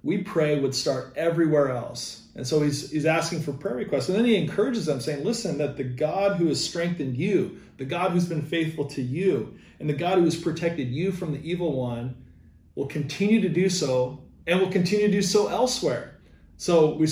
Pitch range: 135-175 Hz